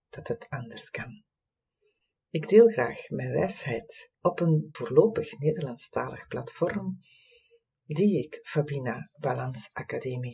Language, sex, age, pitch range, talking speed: English, female, 40-59, 125-185 Hz, 110 wpm